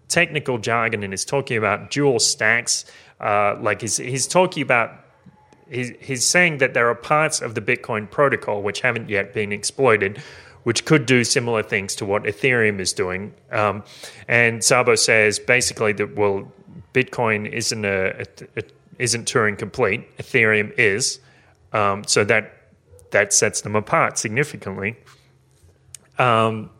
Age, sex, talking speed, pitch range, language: 30-49, male, 150 wpm, 110-135 Hz, English